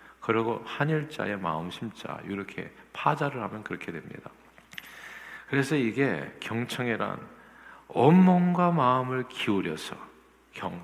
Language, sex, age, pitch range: Korean, male, 50-69, 100-140 Hz